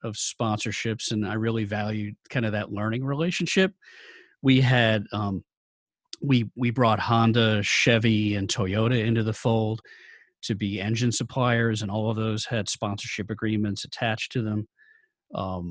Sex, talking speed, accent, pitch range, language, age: male, 150 wpm, American, 105-125 Hz, English, 40-59